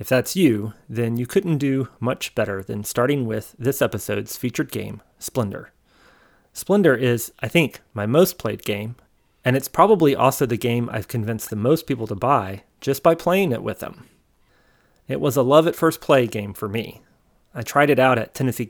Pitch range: 110-140 Hz